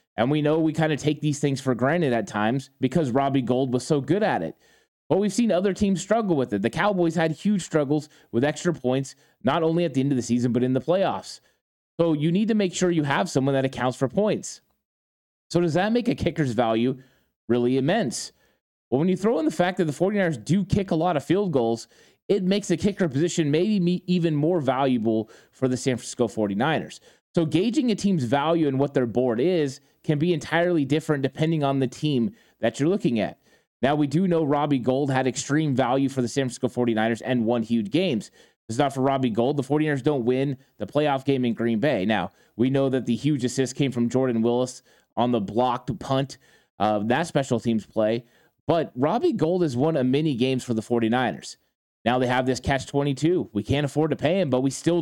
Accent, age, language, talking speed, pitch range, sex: American, 20-39, English, 220 wpm, 125-165 Hz, male